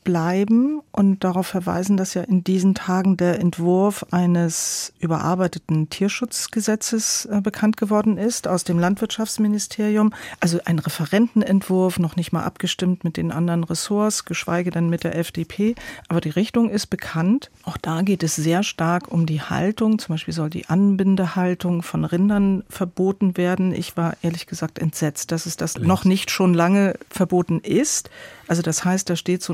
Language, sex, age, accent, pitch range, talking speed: German, female, 40-59, German, 170-200 Hz, 160 wpm